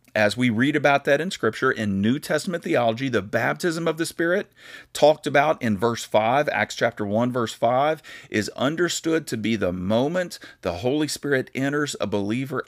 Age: 50-69